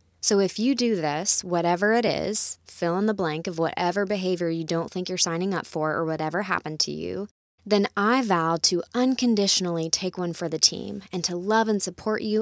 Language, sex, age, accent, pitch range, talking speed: English, female, 20-39, American, 165-200 Hz, 210 wpm